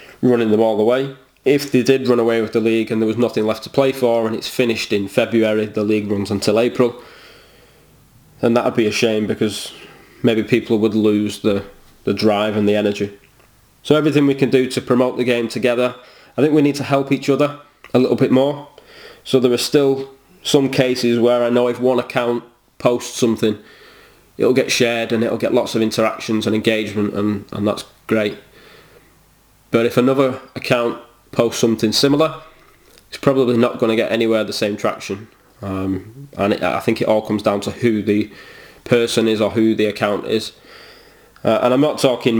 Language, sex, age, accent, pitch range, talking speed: English, male, 20-39, British, 110-130 Hz, 195 wpm